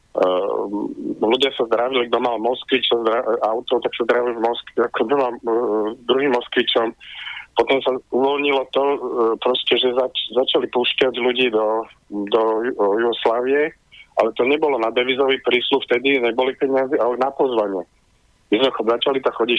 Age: 40-59